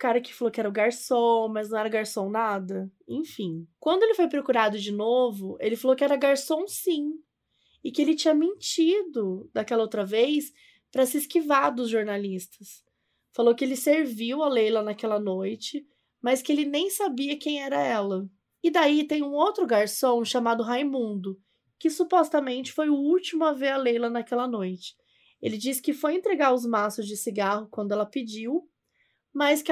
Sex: female